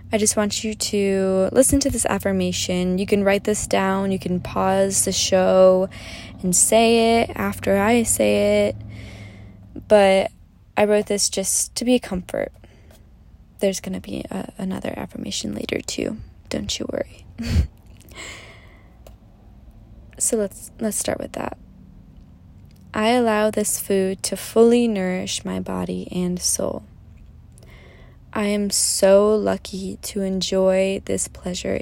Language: English